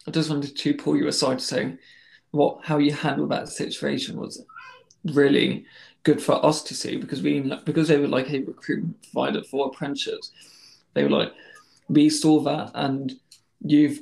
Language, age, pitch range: English, 20-39, 140-155 Hz